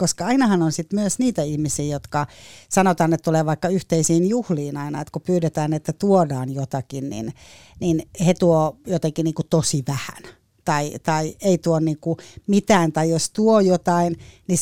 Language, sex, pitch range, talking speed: Finnish, female, 155-185 Hz, 165 wpm